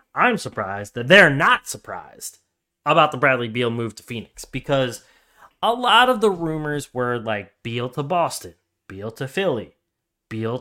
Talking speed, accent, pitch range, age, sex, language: 160 wpm, American, 110-150 Hz, 20-39, male, English